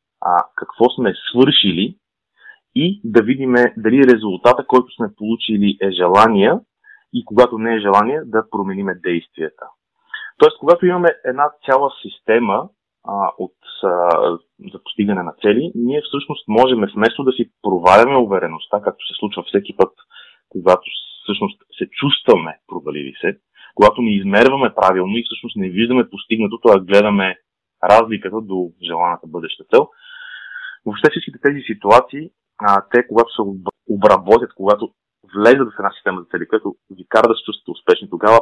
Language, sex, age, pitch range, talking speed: Bulgarian, male, 20-39, 95-130 Hz, 145 wpm